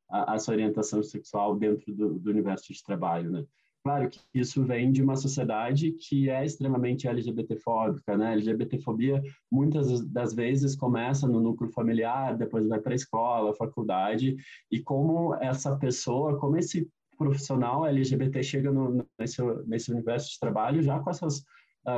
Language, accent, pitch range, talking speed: Portuguese, Brazilian, 115-140 Hz, 155 wpm